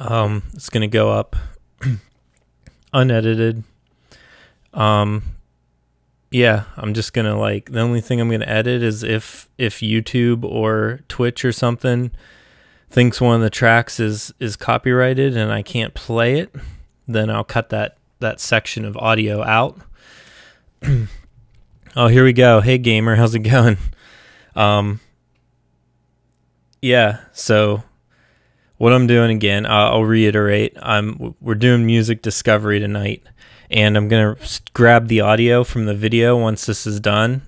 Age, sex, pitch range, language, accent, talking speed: 20-39, male, 105-115 Hz, English, American, 140 wpm